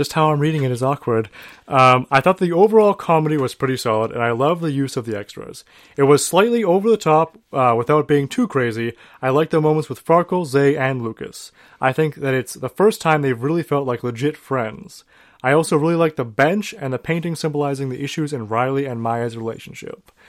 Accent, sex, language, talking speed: American, male, English, 220 wpm